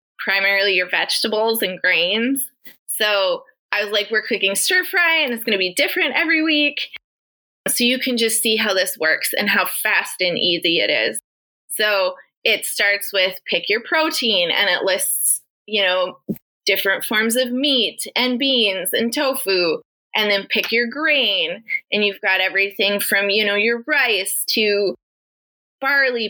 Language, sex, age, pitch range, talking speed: English, female, 20-39, 205-290 Hz, 165 wpm